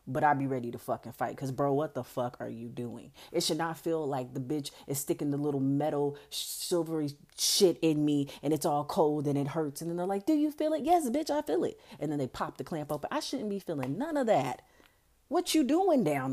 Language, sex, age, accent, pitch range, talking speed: English, female, 30-49, American, 140-230 Hz, 255 wpm